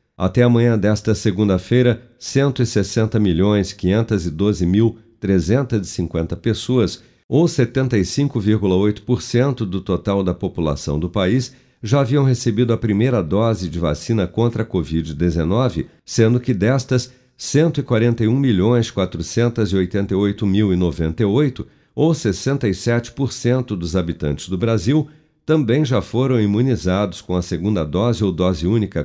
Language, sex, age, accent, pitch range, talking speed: Portuguese, male, 50-69, Brazilian, 95-120 Hz, 110 wpm